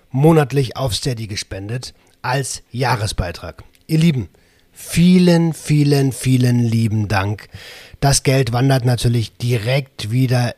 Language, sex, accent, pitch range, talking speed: German, male, German, 120-140 Hz, 110 wpm